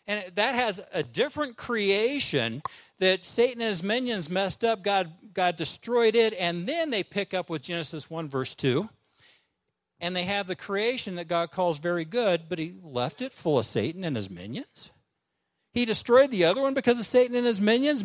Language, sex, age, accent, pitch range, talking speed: English, male, 50-69, American, 170-235 Hz, 195 wpm